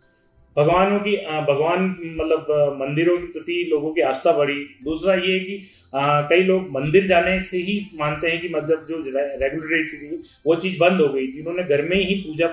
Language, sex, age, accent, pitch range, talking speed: Hindi, male, 30-49, native, 145-180 Hz, 200 wpm